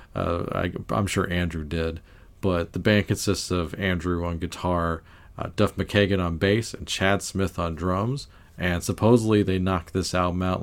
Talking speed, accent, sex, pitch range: 170 wpm, American, male, 85-100 Hz